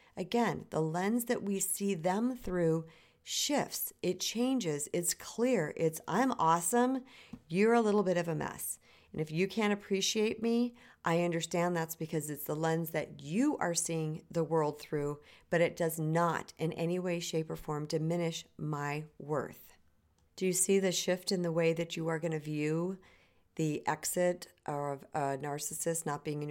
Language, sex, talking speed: English, female, 175 wpm